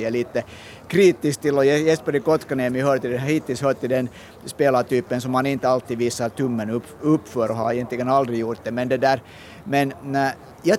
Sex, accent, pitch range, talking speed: male, Finnish, 115-150 Hz, 185 wpm